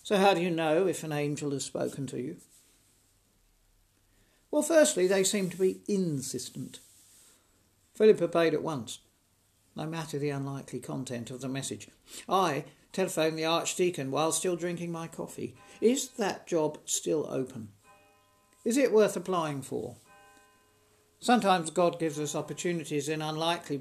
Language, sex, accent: English, male, British